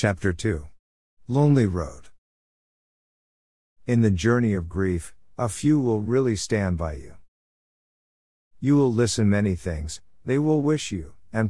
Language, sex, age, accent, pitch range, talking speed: Greek, male, 50-69, American, 90-120 Hz, 135 wpm